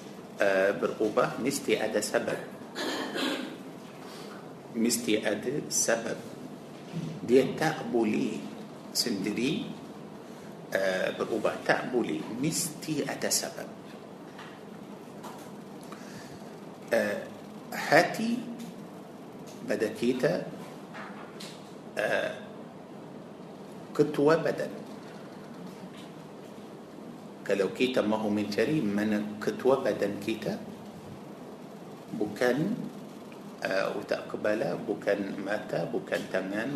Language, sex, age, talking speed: Malay, male, 50-69, 55 wpm